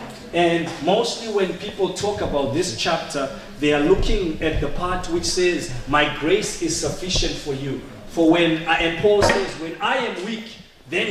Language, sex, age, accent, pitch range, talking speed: English, male, 30-49, South African, 165-235 Hz, 180 wpm